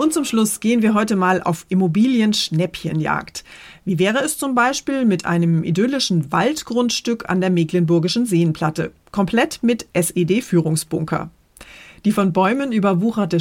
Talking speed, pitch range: 130 wpm, 170-225 Hz